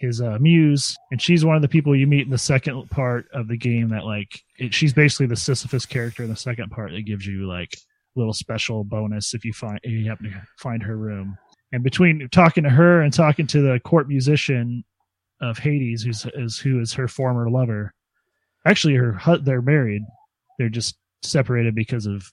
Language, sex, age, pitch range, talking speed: English, male, 30-49, 105-140 Hz, 210 wpm